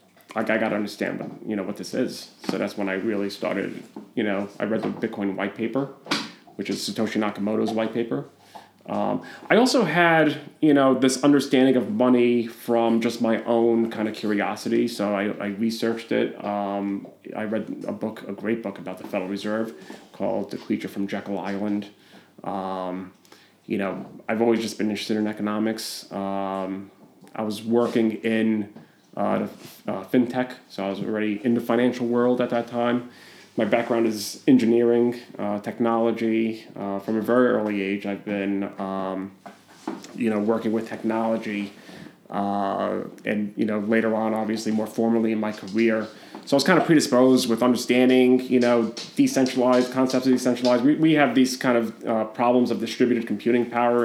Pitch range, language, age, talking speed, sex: 105-120 Hz, English, 30-49, 175 wpm, male